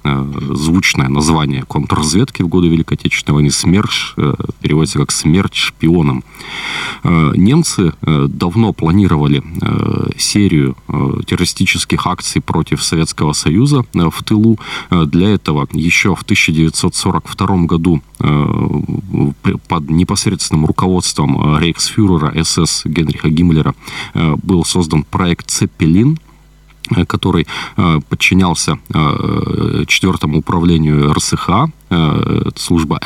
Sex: male